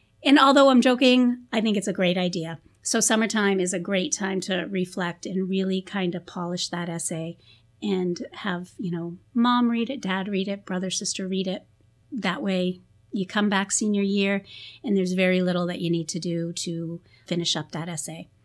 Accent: American